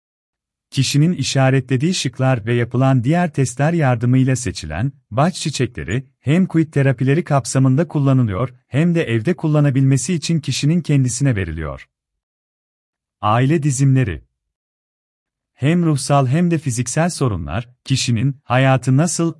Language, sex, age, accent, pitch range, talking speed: Turkish, male, 40-59, native, 110-145 Hz, 110 wpm